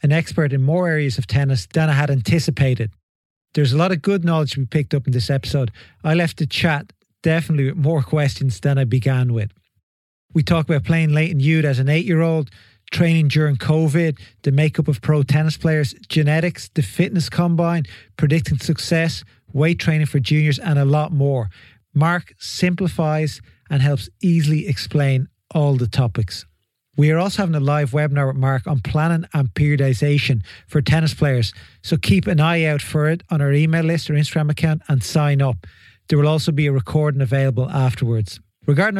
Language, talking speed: English, 185 wpm